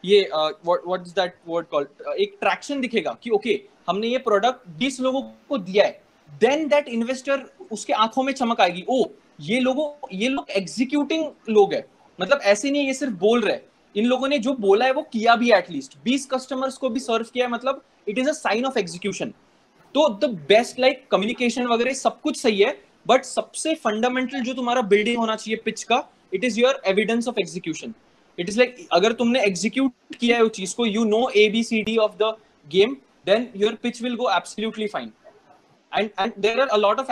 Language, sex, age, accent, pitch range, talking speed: English, male, 20-39, Indian, 200-250 Hz, 180 wpm